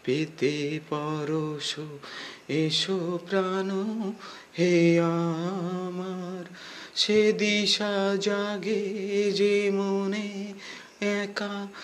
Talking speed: 55 wpm